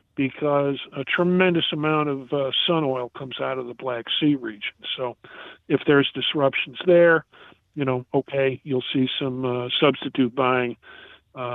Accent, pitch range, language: American, 130-160 Hz, English